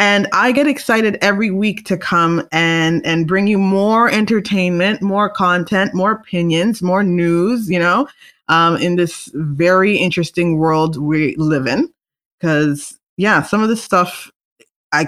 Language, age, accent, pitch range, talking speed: English, 20-39, American, 165-220 Hz, 150 wpm